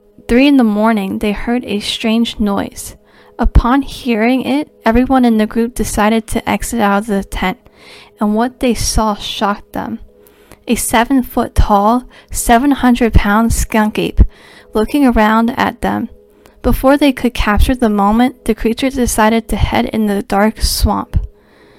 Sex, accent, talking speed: female, American, 145 wpm